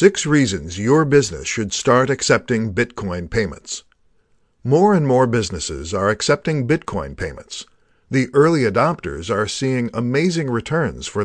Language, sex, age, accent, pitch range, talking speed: English, male, 50-69, American, 105-145 Hz, 135 wpm